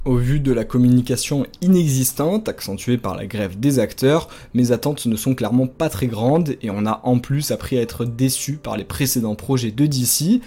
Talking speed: 200 wpm